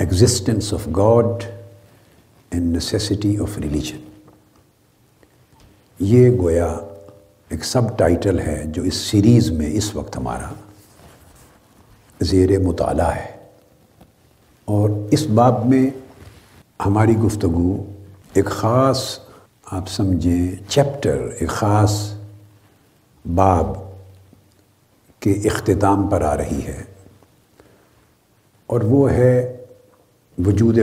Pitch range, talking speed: 95-115 Hz, 90 wpm